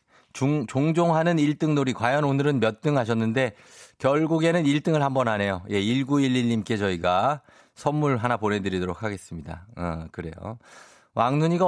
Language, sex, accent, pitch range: Korean, male, native, 105-150 Hz